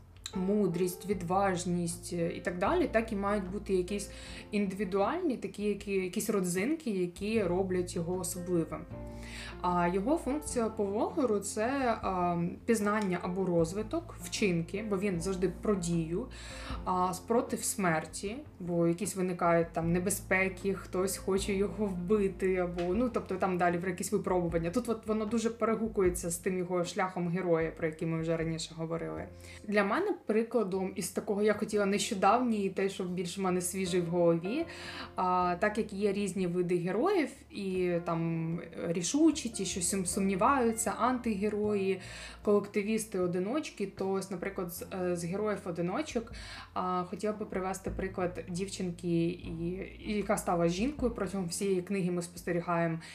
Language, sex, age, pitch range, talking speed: Ukrainian, female, 20-39, 180-215 Hz, 140 wpm